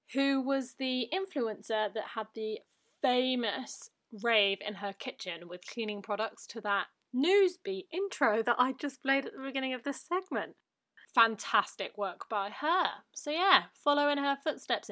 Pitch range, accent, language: 220-275 Hz, British, English